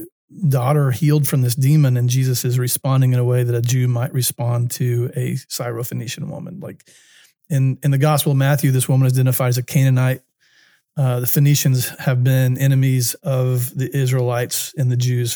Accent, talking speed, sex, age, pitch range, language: American, 185 wpm, male, 40-59, 125-150 Hz, English